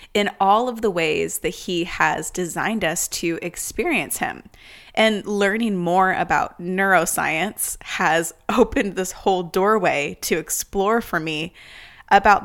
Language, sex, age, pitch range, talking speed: English, female, 20-39, 170-210 Hz, 135 wpm